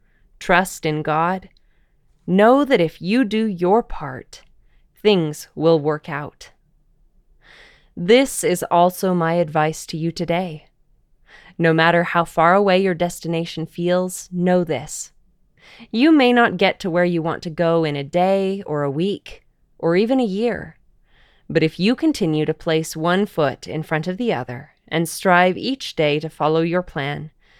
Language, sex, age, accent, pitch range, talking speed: English, female, 20-39, American, 155-195 Hz, 160 wpm